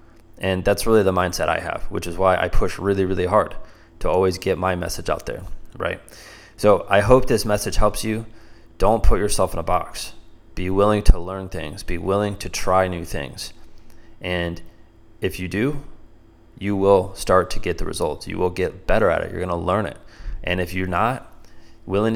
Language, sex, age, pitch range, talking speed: English, male, 20-39, 90-105 Hz, 200 wpm